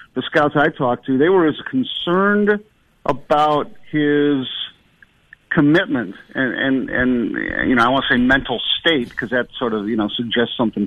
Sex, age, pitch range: male, 50-69, 130-170 Hz